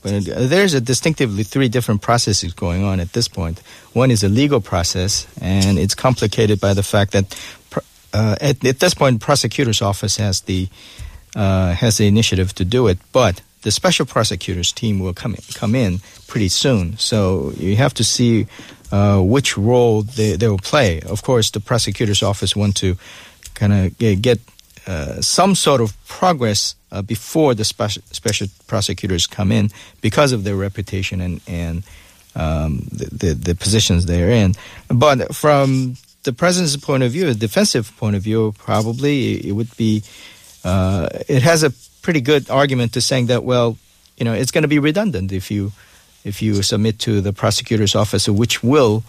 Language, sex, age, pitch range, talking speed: English, male, 50-69, 95-125 Hz, 180 wpm